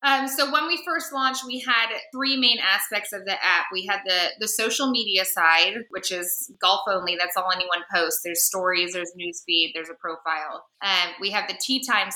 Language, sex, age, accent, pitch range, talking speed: English, female, 20-39, American, 175-215 Hz, 210 wpm